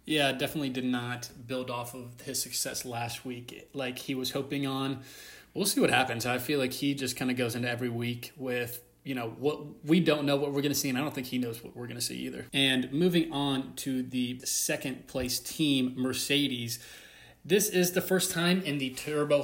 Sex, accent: male, American